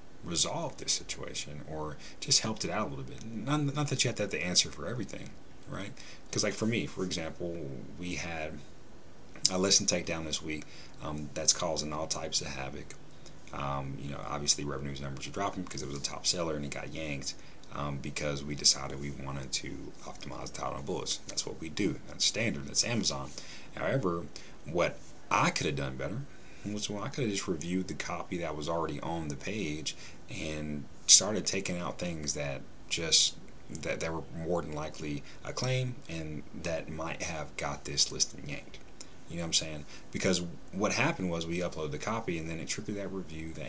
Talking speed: 200 wpm